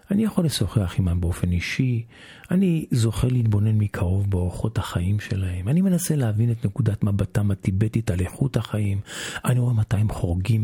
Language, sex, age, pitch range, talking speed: Hebrew, male, 50-69, 100-125 Hz, 160 wpm